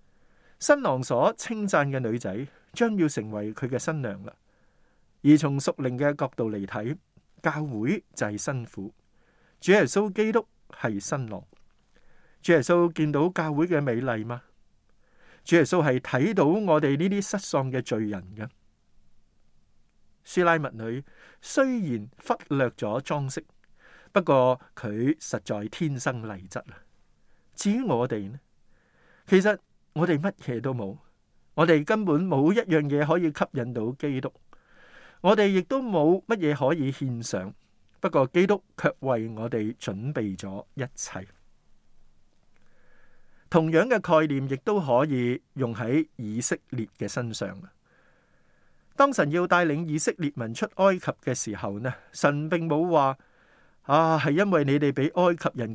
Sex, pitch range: male, 115-165 Hz